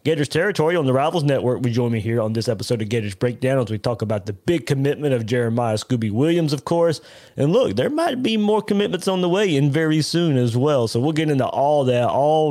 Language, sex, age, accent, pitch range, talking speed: English, male, 30-49, American, 115-150 Hz, 240 wpm